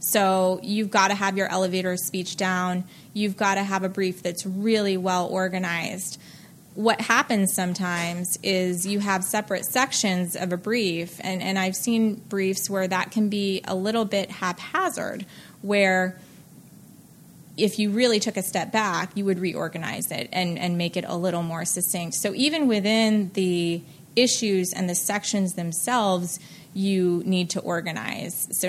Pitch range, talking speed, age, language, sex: 175-200 Hz, 160 wpm, 20-39, English, female